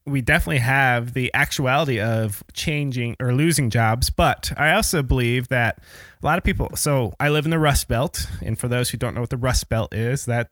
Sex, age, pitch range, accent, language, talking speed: male, 20-39, 115-140 Hz, American, English, 215 wpm